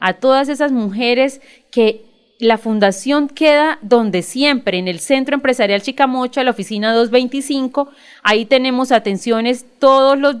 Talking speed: 135 wpm